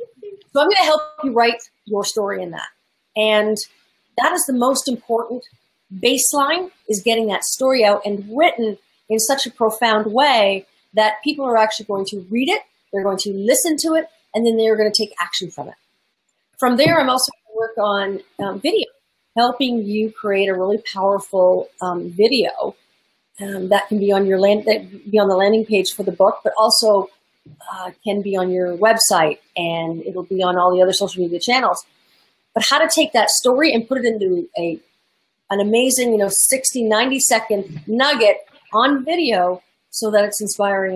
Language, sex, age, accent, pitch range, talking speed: English, female, 40-59, American, 200-255 Hz, 190 wpm